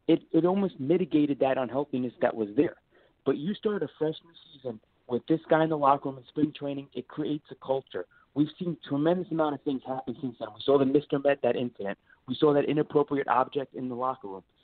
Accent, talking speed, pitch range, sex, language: American, 225 wpm, 135-170 Hz, male, English